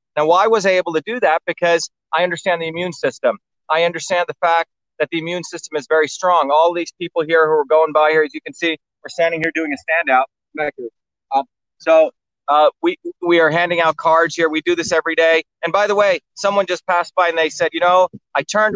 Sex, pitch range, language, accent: male, 155-180 Hz, English, American